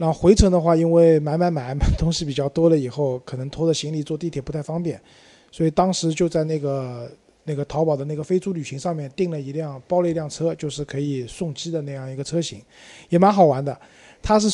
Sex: male